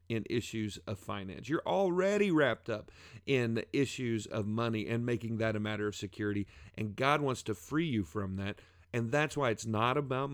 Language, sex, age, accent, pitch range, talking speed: English, male, 40-59, American, 100-135 Hz, 195 wpm